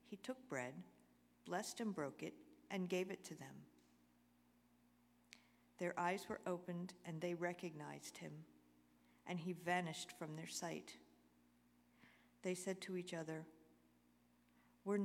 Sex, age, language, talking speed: female, 50-69, English, 130 wpm